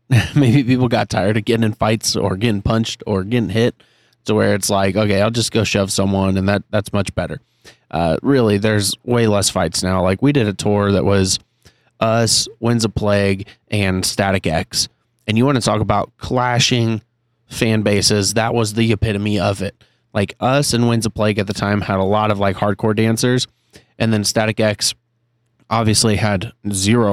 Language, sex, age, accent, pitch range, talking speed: English, male, 30-49, American, 100-120 Hz, 195 wpm